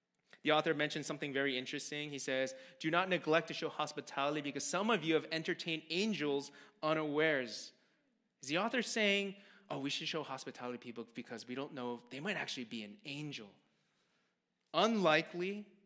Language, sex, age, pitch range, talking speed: English, male, 20-39, 135-175 Hz, 165 wpm